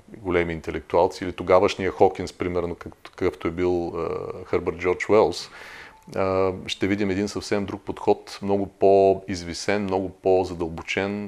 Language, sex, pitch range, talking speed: Bulgarian, male, 90-105 Hz, 115 wpm